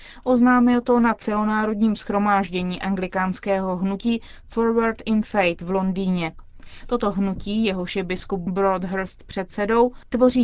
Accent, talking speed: native, 115 wpm